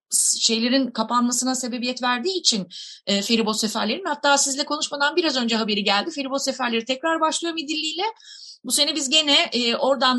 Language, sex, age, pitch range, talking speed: Turkish, female, 30-49, 210-285 Hz, 160 wpm